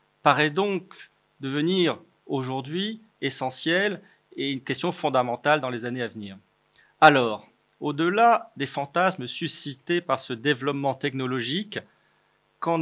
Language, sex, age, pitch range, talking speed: French, male, 30-49, 130-165 Hz, 110 wpm